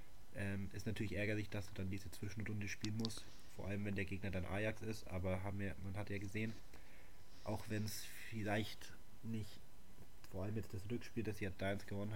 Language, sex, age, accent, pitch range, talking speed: German, male, 20-39, German, 95-105 Hz, 200 wpm